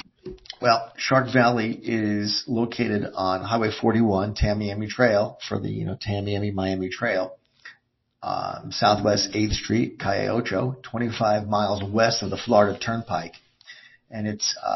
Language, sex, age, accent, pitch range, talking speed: English, male, 50-69, American, 100-125 Hz, 125 wpm